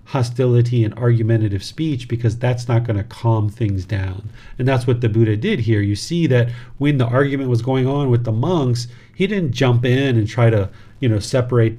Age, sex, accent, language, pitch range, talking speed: 40-59, male, American, English, 110-130 Hz, 210 wpm